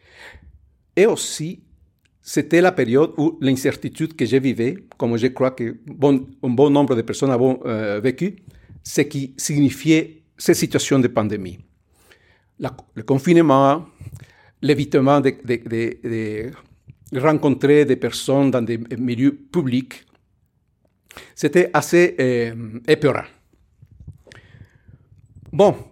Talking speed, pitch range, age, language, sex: 115 wpm, 115-145 Hz, 50-69, French, male